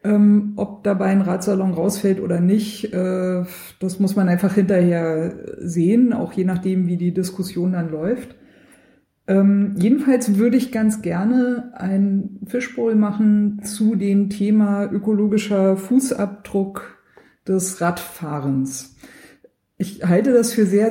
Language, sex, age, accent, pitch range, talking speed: German, female, 50-69, German, 185-215 Hz, 120 wpm